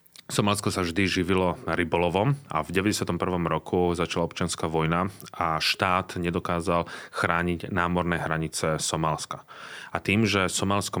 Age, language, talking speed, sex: 30-49, Slovak, 125 wpm, male